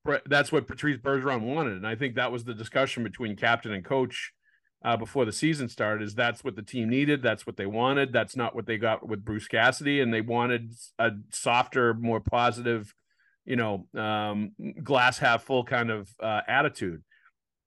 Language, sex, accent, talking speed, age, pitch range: English, male, American, 190 wpm, 40-59, 115-135 Hz